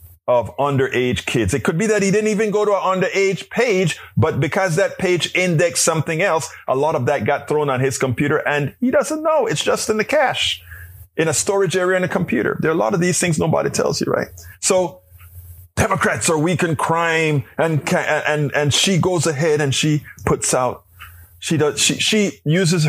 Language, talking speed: English, 205 wpm